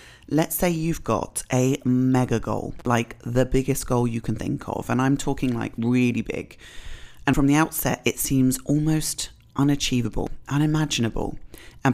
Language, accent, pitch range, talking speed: English, British, 115-140 Hz, 155 wpm